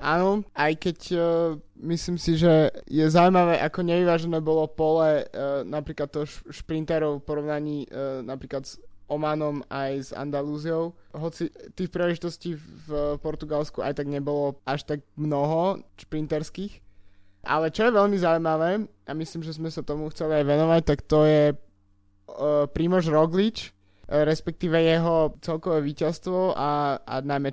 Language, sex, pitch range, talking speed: Slovak, male, 145-165 Hz, 145 wpm